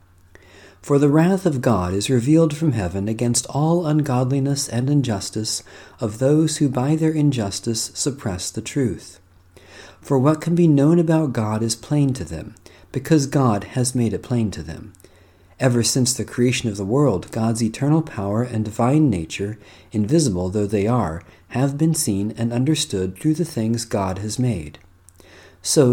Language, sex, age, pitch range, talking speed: English, male, 40-59, 95-140 Hz, 165 wpm